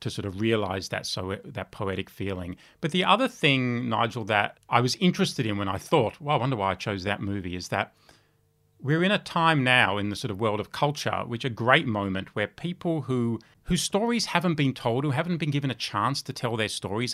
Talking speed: 230 wpm